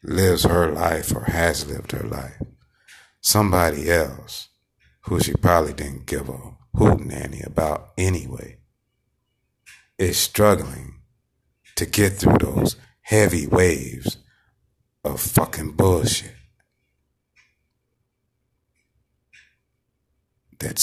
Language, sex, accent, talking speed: English, male, American, 90 wpm